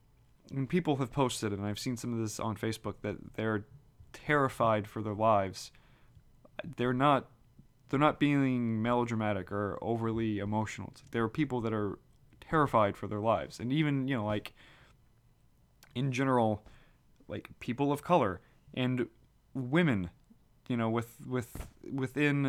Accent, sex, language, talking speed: American, male, English, 145 wpm